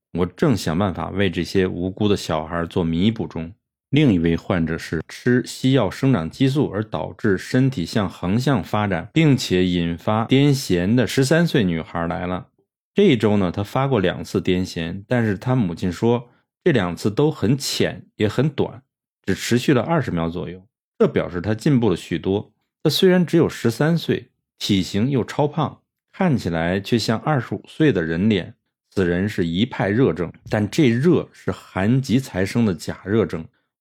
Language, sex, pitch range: Chinese, male, 90-130 Hz